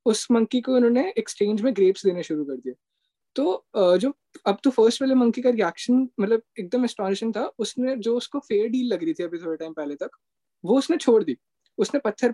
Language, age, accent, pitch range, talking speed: Hindi, 20-39, native, 200-250 Hz, 210 wpm